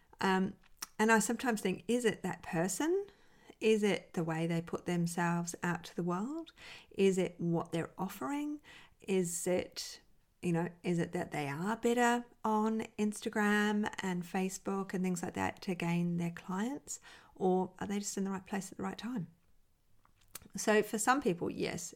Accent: Australian